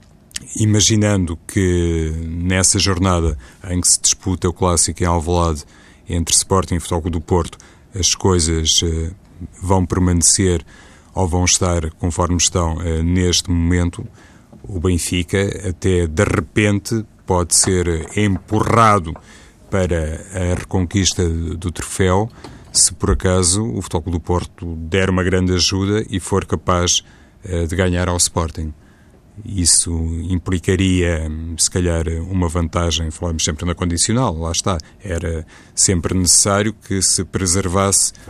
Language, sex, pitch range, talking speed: Portuguese, male, 85-95 Hz, 120 wpm